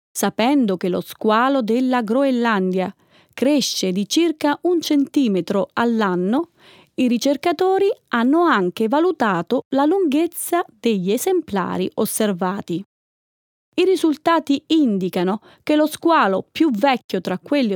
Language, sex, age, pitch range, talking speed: Italian, female, 30-49, 205-310 Hz, 110 wpm